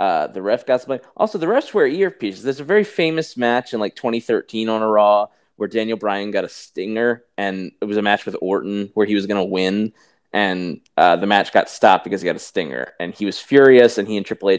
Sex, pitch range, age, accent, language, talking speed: male, 105-160 Hz, 20-39, American, English, 245 wpm